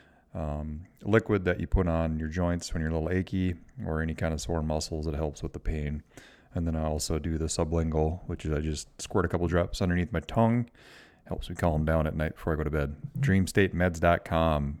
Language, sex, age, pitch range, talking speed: English, male, 30-49, 80-100 Hz, 220 wpm